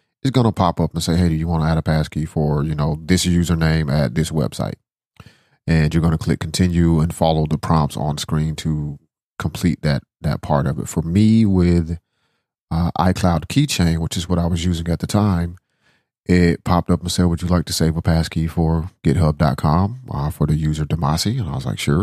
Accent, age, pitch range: American, 30-49, 75-90 Hz